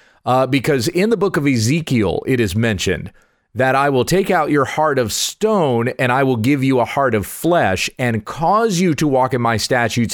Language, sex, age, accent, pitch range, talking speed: English, male, 40-59, American, 120-165 Hz, 215 wpm